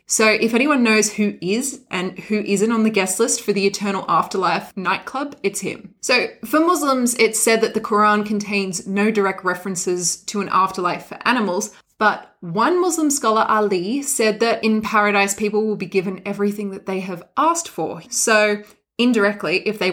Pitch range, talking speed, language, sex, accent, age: 195-235 Hz, 180 wpm, English, female, Australian, 20-39